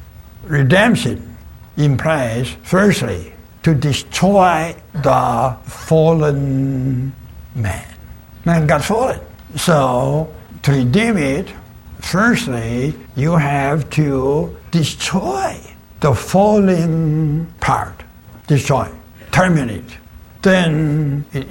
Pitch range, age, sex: 125-165 Hz, 60-79, male